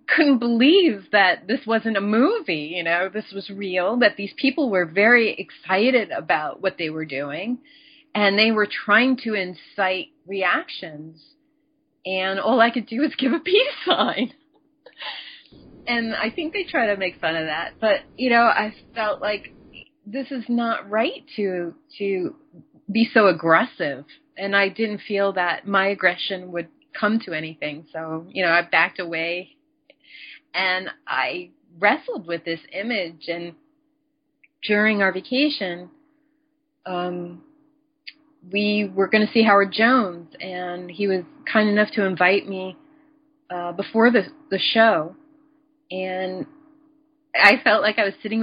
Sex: female